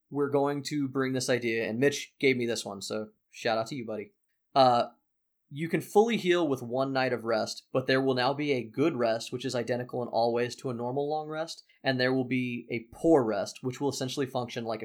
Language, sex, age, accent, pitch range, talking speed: English, male, 20-39, American, 120-140 Hz, 240 wpm